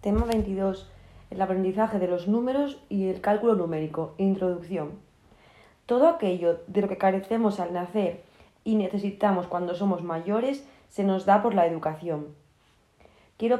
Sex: female